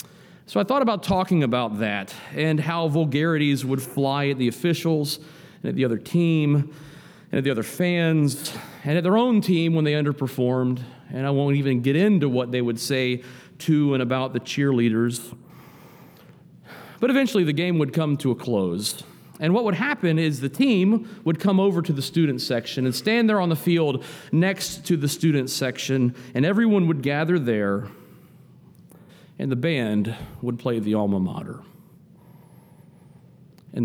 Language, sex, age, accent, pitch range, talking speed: English, male, 40-59, American, 120-165 Hz, 170 wpm